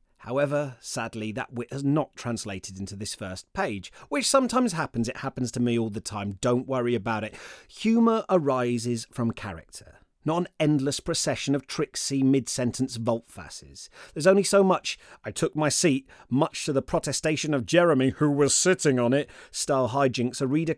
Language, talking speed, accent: English, 175 wpm, British